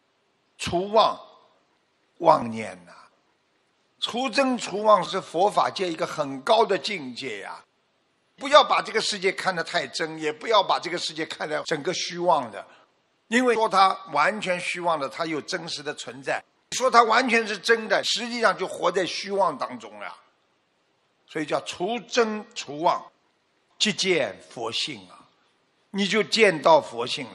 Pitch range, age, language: 170-230 Hz, 50-69, Chinese